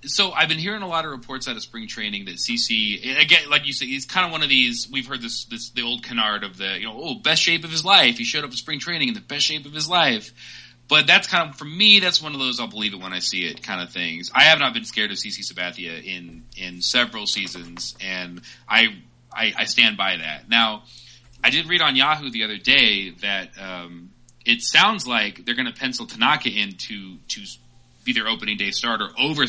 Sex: male